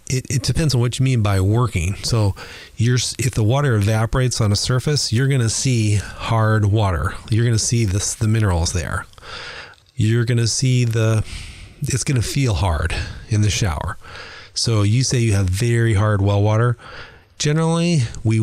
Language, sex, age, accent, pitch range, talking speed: English, male, 30-49, American, 100-125 Hz, 175 wpm